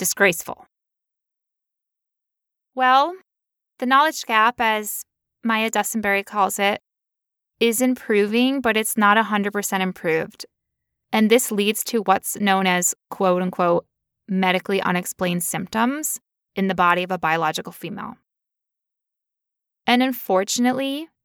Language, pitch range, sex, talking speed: English, 185-230 Hz, female, 115 wpm